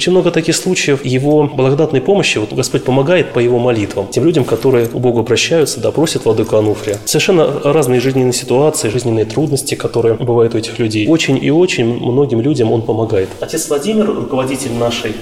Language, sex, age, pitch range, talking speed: Russian, male, 20-39, 115-145 Hz, 180 wpm